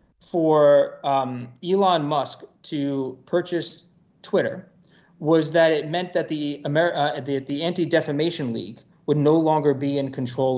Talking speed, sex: 140 wpm, male